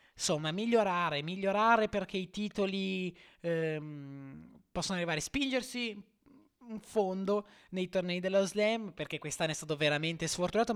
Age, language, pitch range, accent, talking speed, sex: 20-39, Italian, 130-185 Hz, native, 130 wpm, male